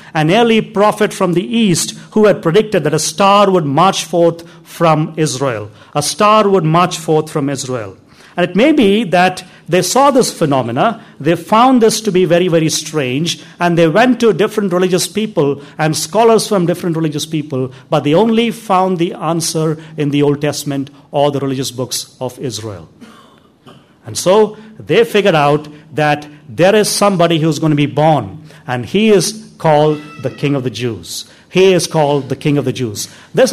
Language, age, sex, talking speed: English, 50-69, male, 185 wpm